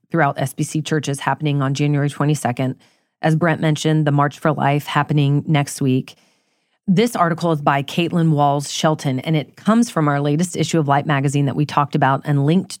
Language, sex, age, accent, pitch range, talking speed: English, female, 30-49, American, 150-190 Hz, 185 wpm